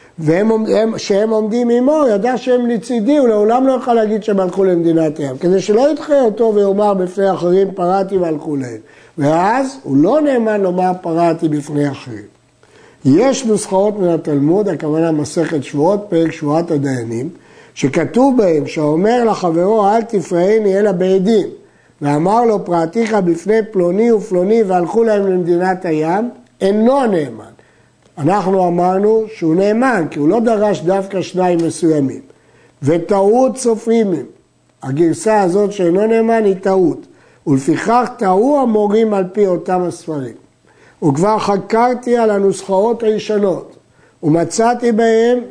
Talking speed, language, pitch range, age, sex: 130 wpm, Hebrew, 175-225 Hz, 60-79, male